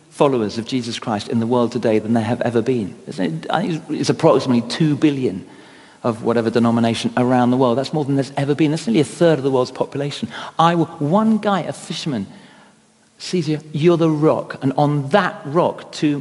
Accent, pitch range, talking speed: British, 125-180 Hz, 195 wpm